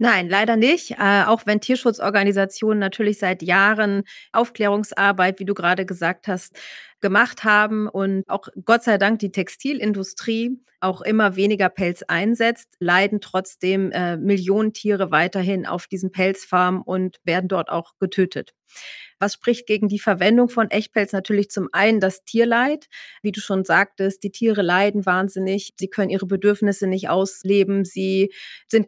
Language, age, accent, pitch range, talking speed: German, 30-49, German, 185-210 Hz, 150 wpm